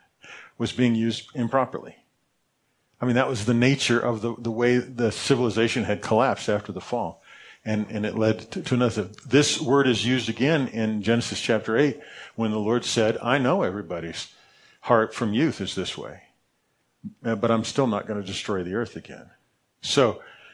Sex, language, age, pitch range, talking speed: male, English, 40-59, 105-125 Hz, 180 wpm